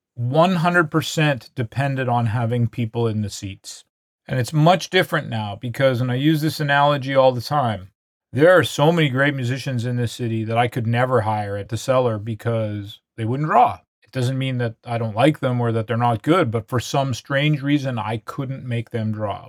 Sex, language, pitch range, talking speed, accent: male, English, 120-150 Hz, 200 wpm, American